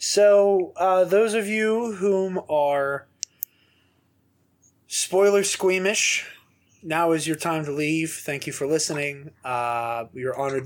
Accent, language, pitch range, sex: American, English, 115-155 Hz, male